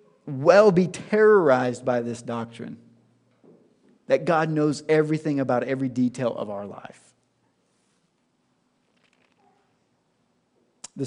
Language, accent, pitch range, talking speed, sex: English, American, 125-165 Hz, 90 wpm, male